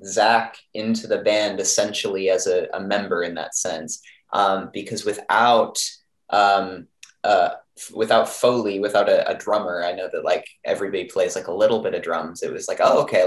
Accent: American